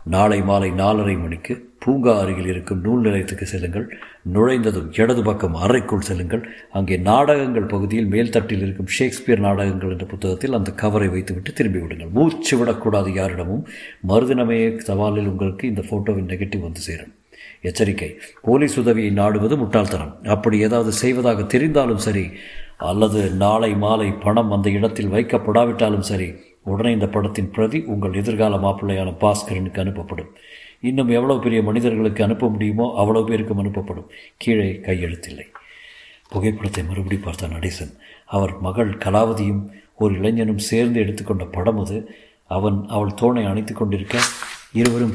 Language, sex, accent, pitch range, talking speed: Tamil, male, native, 95-115 Hz, 125 wpm